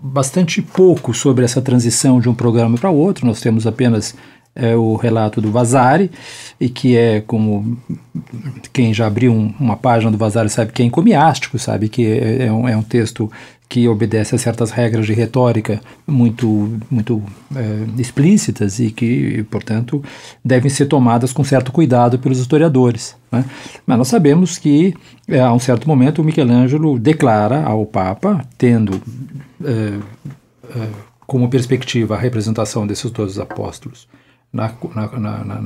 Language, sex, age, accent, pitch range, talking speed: Portuguese, male, 40-59, Brazilian, 110-130 Hz, 155 wpm